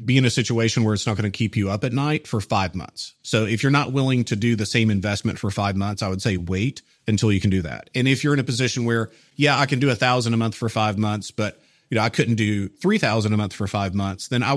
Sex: male